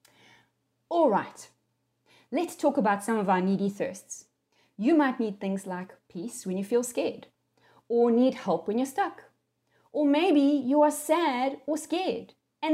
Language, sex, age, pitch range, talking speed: English, female, 30-49, 205-295 Hz, 155 wpm